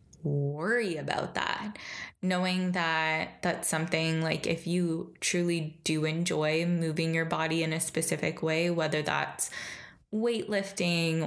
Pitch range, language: 160-180 Hz, English